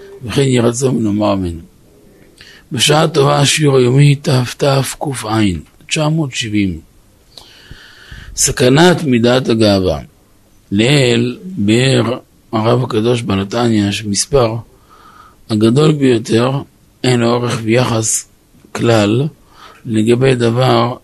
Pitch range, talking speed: 105-125 Hz, 85 wpm